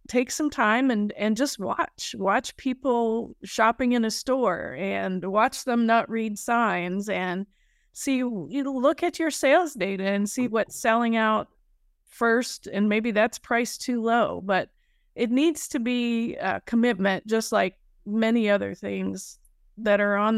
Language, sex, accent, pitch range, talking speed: English, female, American, 200-235 Hz, 155 wpm